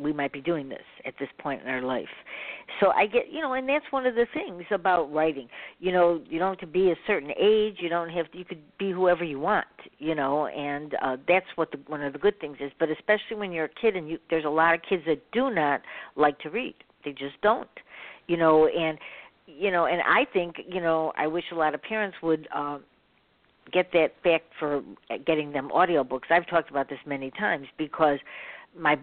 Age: 60-79